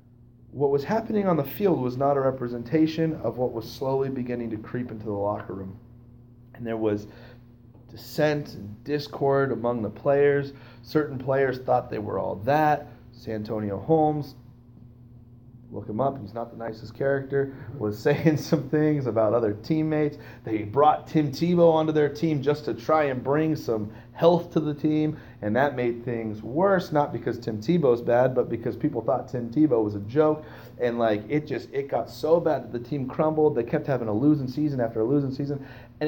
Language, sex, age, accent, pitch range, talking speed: English, male, 30-49, American, 120-150 Hz, 185 wpm